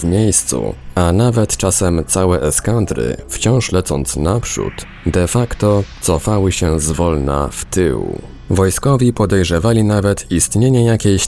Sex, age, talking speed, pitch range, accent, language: male, 20-39, 115 wpm, 80-100 Hz, native, Polish